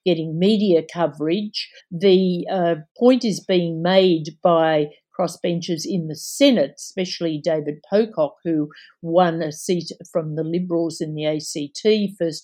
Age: 50-69